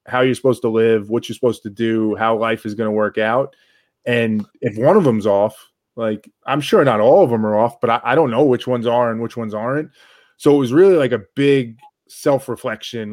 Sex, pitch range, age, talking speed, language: male, 105-125 Hz, 20-39, 240 wpm, English